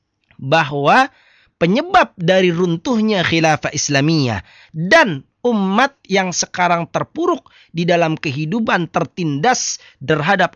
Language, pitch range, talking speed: Indonesian, 130-190 Hz, 90 wpm